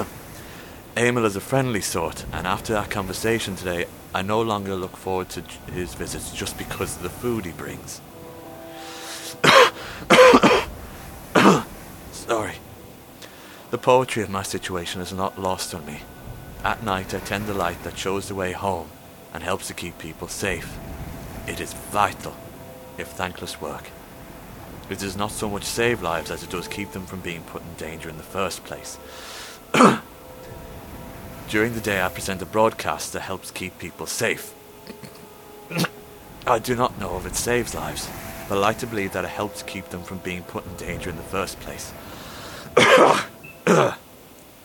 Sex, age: male, 30-49